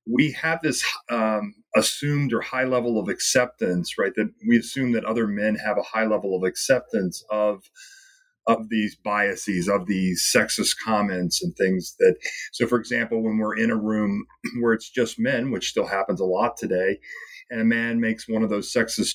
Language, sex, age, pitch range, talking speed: English, male, 40-59, 110-155 Hz, 190 wpm